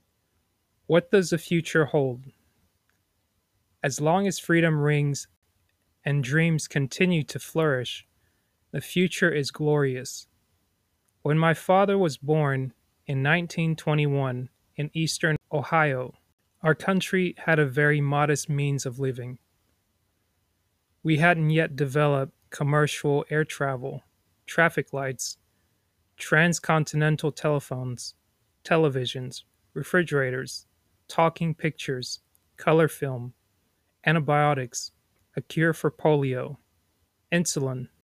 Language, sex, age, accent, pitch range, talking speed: English, male, 20-39, American, 100-155 Hz, 95 wpm